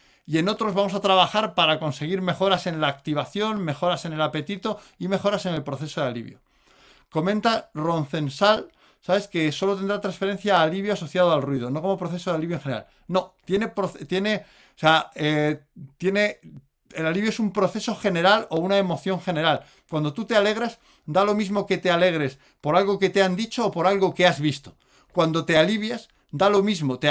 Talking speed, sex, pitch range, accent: 195 wpm, male, 155-195 Hz, Spanish